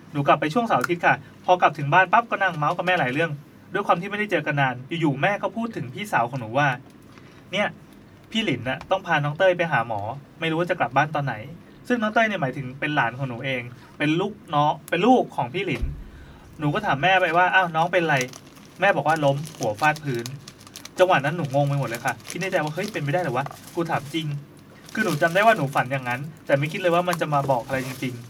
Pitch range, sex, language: 135-175 Hz, male, English